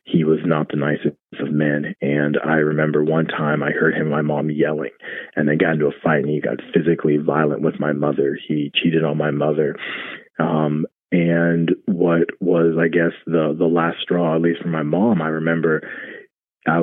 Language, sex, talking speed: English, male, 200 wpm